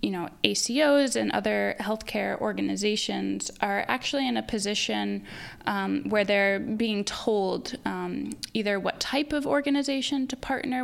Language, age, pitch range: English, 10-29, 195-250 Hz